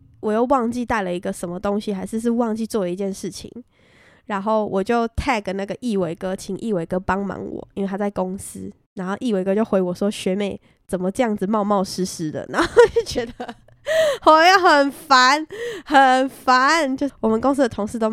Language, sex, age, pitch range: Chinese, female, 20-39, 195-250 Hz